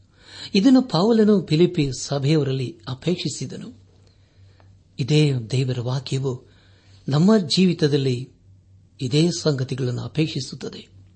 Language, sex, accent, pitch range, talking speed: Kannada, male, native, 95-150 Hz, 70 wpm